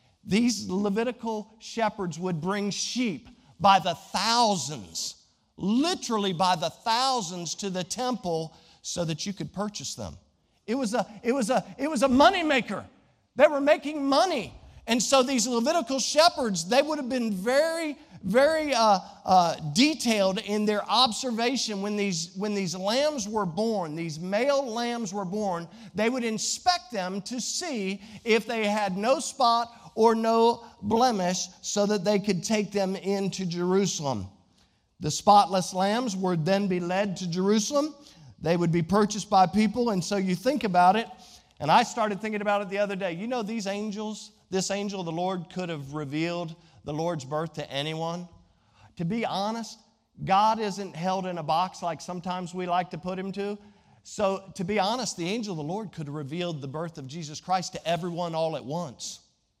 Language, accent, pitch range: English, American, 180-230 Hz